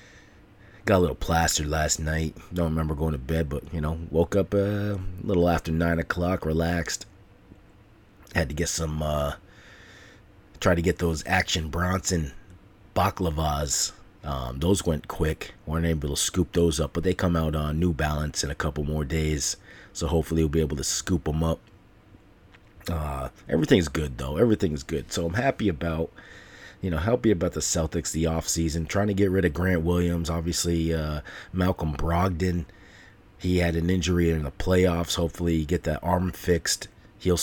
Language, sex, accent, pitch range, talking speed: English, male, American, 80-95 Hz, 175 wpm